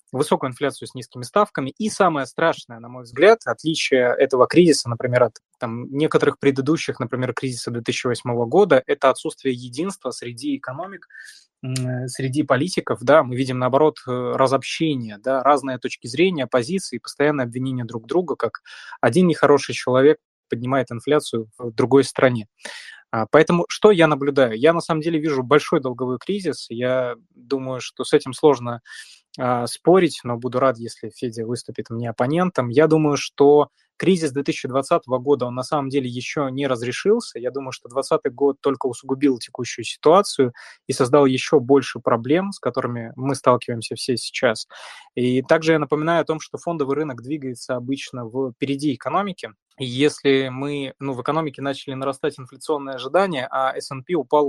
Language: Russian